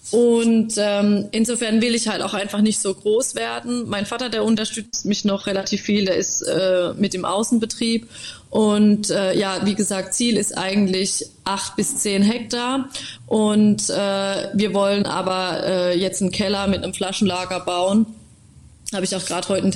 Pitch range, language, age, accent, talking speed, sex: 185-215 Hz, German, 20-39, German, 175 wpm, female